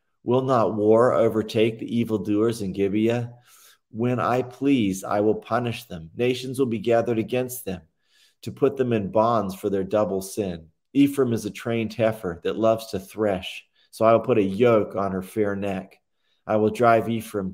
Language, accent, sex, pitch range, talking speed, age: English, American, male, 100-120 Hz, 180 wpm, 40-59